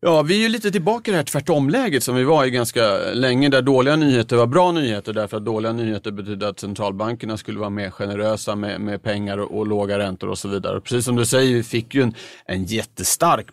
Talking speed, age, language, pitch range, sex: 235 wpm, 30-49, Swedish, 100-125 Hz, male